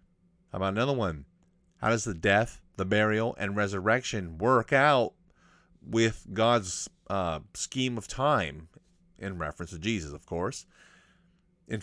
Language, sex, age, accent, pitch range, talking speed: English, male, 30-49, American, 90-125 Hz, 130 wpm